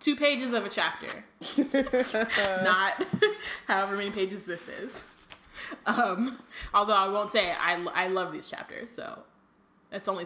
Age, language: 20-39, English